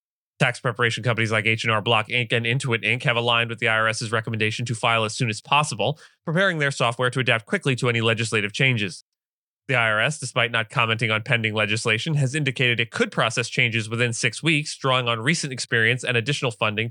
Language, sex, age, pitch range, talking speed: English, male, 20-39, 115-130 Hz, 200 wpm